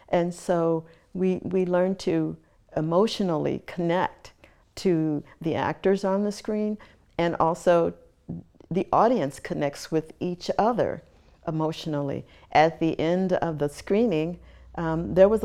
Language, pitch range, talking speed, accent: English, 150-180 Hz, 125 wpm, American